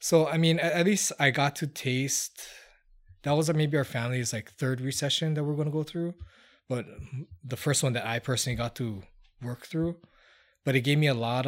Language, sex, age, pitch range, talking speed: English, male, 20-39, 110-135 Hz, 210 wpm